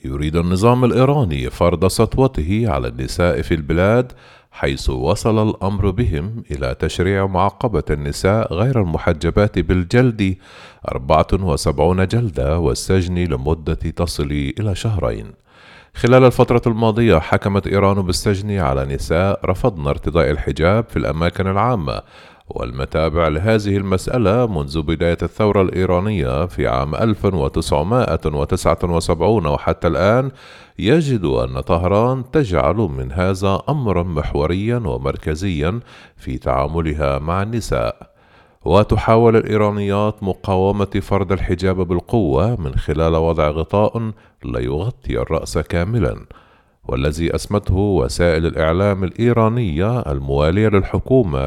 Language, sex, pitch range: Arabic, male, 80-110 Hz